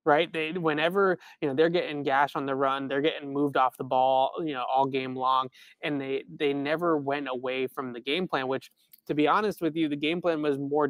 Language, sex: English, male